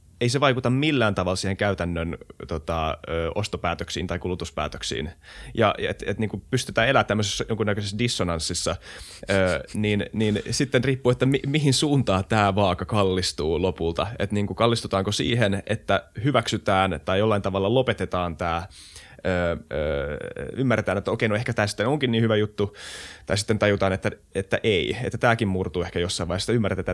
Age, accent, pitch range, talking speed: 20-39, native, 90-110 Hz, 155 wpm